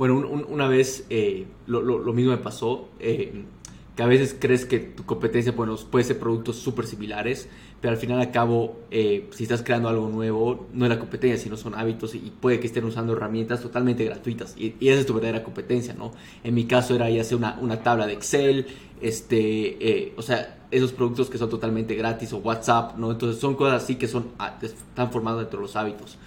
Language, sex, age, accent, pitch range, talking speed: Spanish, male, 20-39, Mexican, 110-125 Hz, 225 wpm